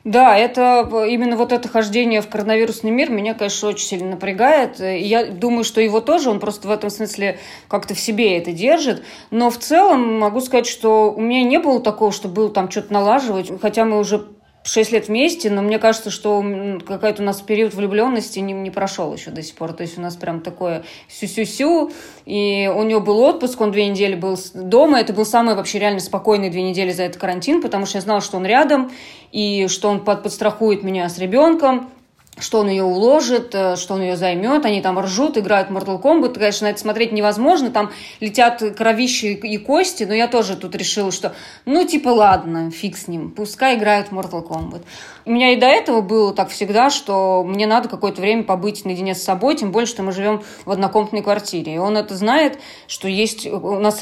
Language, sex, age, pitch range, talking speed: Russian, female, 20-39, 195-230 Hz, 205 wpm